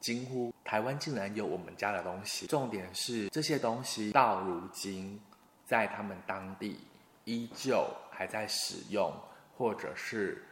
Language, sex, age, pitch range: Chinese, male, 20-39, 95-120 Hz